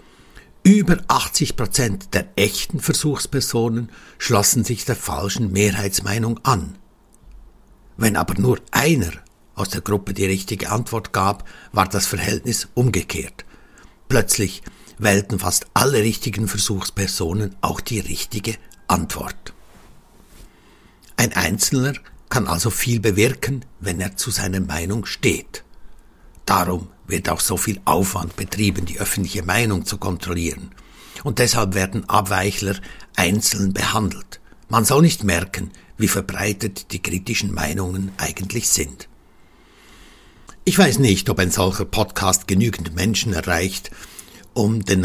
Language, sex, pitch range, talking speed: German, male, 95-110 Hz, 120 wpm